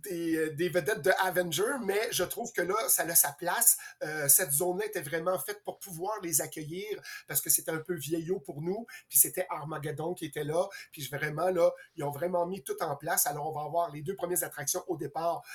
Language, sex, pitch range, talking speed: French, male, 155-185 Hz, 230 wpm